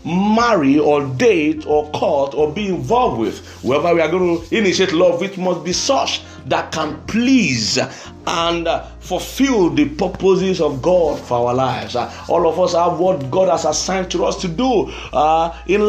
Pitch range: 155-205 Hz